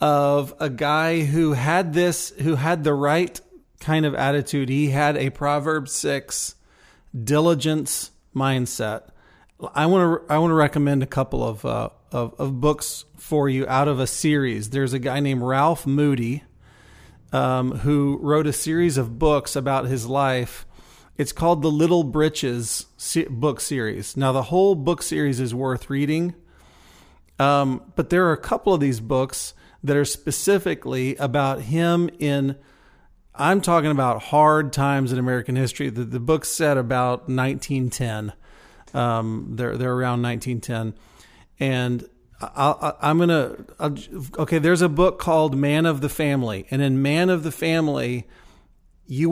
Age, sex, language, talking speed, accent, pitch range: 40-59, male, English, 155 wpm, American, 130-155 Hz